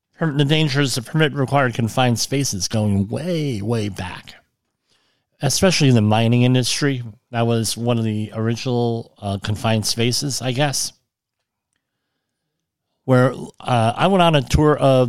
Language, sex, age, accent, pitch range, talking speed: English, male, 40-59, American, 100-140 Hz, 145 wpm